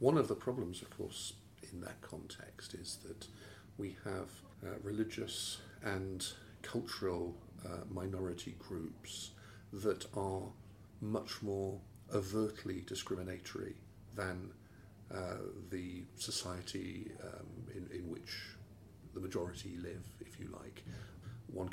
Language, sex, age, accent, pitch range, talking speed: English, male, 50-69, British, 95-105 Hz, 115 wpm